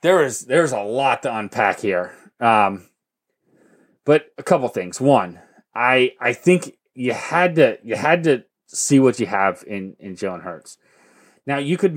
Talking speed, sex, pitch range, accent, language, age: 175 wpm, male, 120-165 Hz, American, English, 30-49